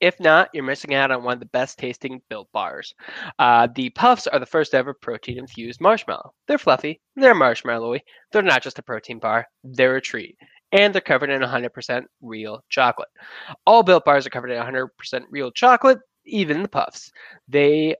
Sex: male